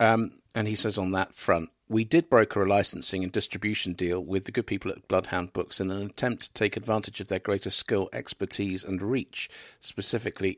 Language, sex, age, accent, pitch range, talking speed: English, male, 50-69, British, 95-120 Hz, 200 wpm